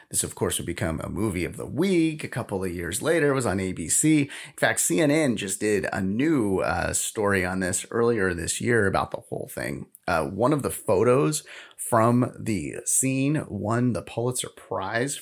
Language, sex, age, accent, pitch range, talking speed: English, male, 30-49, American, 105-150 Hz, 195 wpm